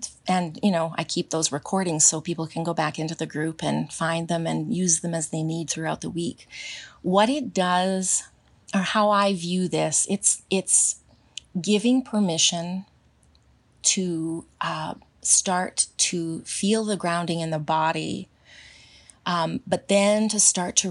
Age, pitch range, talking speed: 30-49, 165-190 Hz, 160 wpm